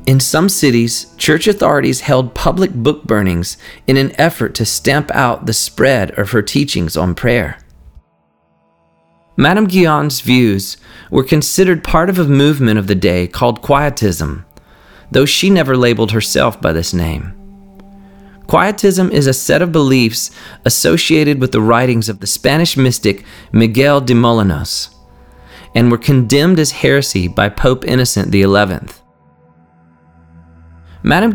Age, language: 30-49, English